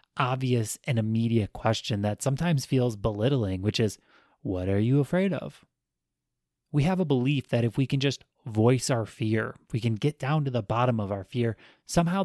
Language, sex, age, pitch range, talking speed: English, male, 30-49, 110-145 Hz, 185 wpm